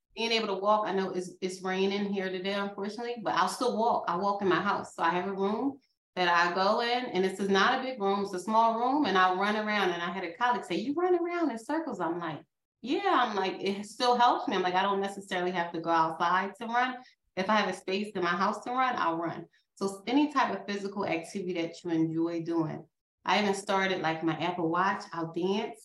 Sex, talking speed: female, 250 wpm